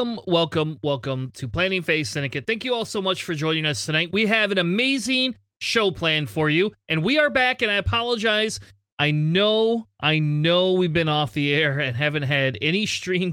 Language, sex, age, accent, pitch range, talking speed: English, male, 30-49, American, 140-195 Hz, 205 wpm